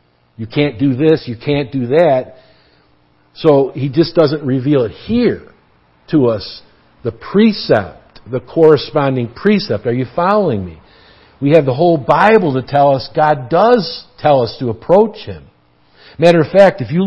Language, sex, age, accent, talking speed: English, male, 50-69, American, 160 wpm